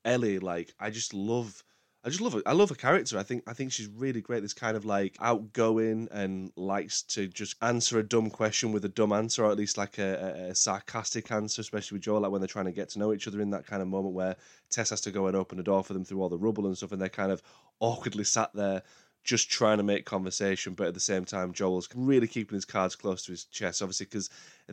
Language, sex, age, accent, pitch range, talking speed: English, male, 20-39, British, 95-110 Hz, 265 wpm